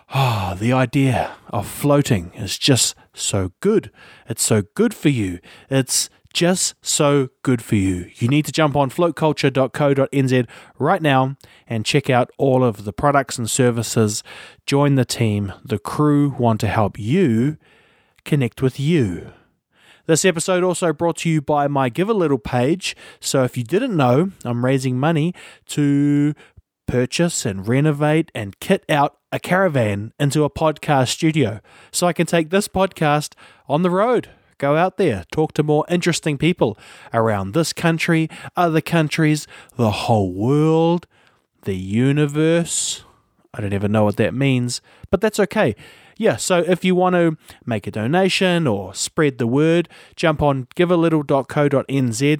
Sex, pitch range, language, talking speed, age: male, 120-165 Hz, English, 155 wpm, 20-39